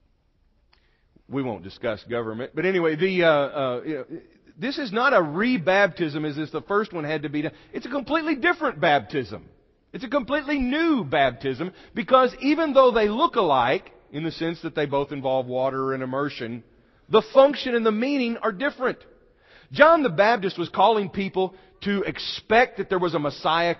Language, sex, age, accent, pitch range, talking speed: English, male, 40-59, American, 170-255 Hz, 180 wpm